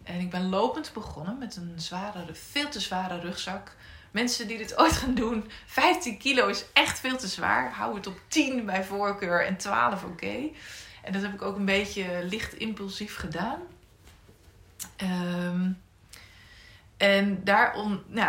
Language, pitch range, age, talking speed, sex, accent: Dutch, 165-220 Hz, 20-39, 145 wpm, female, Dutch